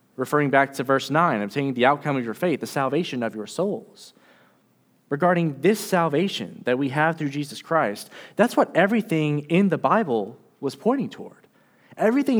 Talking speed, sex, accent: 170 wpm, male, American